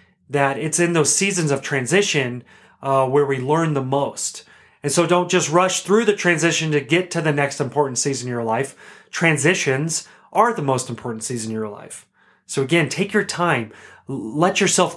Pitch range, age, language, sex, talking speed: 135-175 Hz, 30-49, English, male, 190 wpm